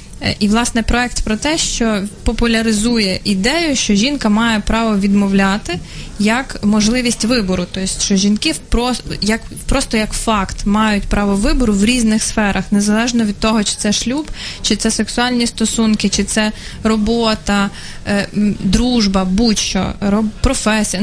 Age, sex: 20-39, female